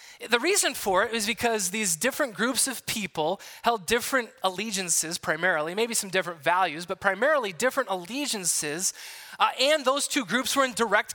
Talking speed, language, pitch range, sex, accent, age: 165 wpm, English, 180-255 Hz, male, American, 20-39